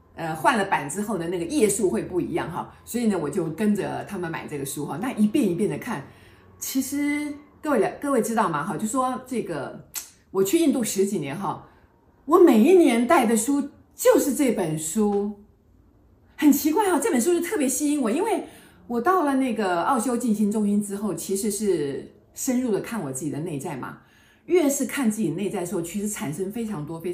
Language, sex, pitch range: Chinese, female, 170-250 Hz